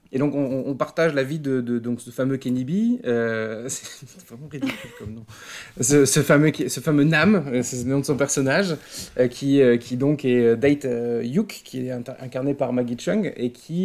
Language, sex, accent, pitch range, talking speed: French, male, French, 115-150 Hz, 215 wpm